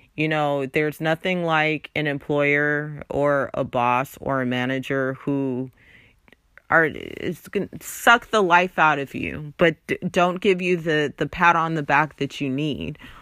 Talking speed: 165 wpm